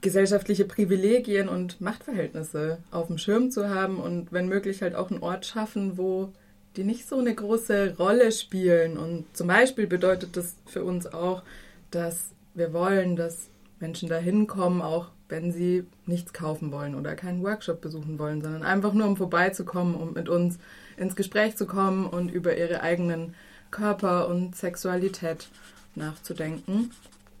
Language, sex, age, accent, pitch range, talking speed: German, female, 20-39, German, 170-205 Hz, 155 wpm